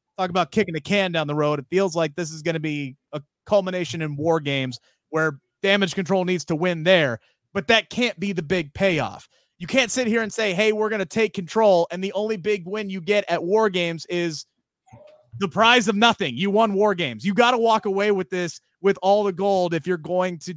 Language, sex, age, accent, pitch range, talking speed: English, male, 30-49, American, 180-255 Hz, 235 wpm